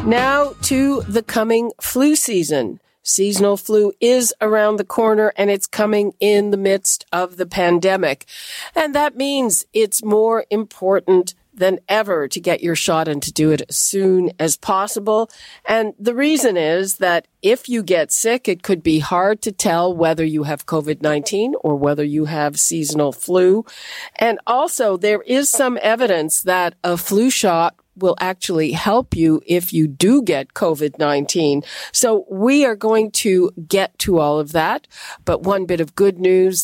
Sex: female